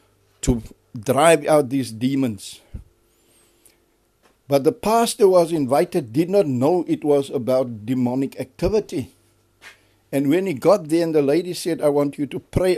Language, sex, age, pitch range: English, male, 60-79, 125-165 Hz